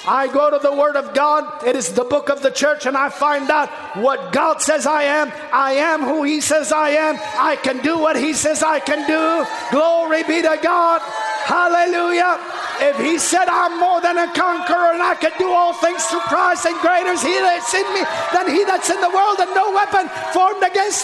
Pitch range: 285-345 Hz